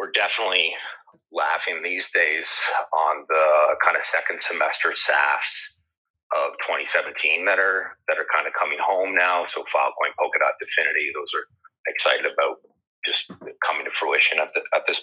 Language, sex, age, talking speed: English, male, 30-49, 150 wpm